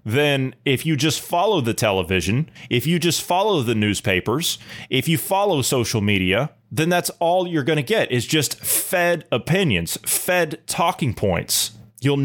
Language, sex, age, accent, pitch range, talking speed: English, male, 30-49, American, 115-165 Hz, 160 wpm